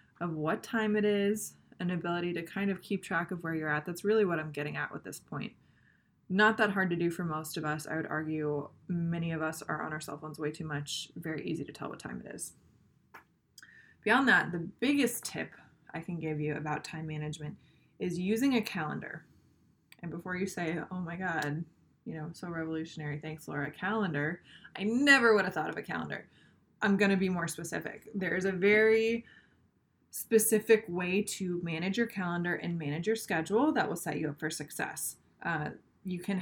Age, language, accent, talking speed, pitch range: 20-39, English, American, 205 wpm, 155-195 Hz